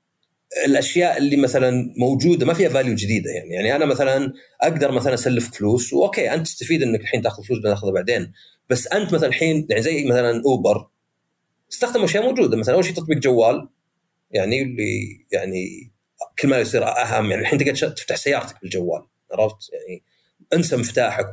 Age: 40-59